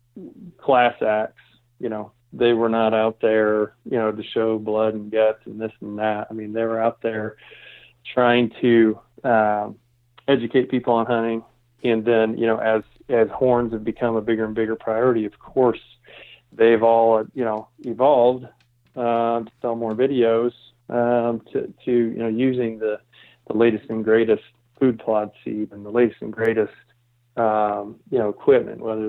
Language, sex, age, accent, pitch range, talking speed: English, male, 40-59, American, 110-120 Hz, 170 wpm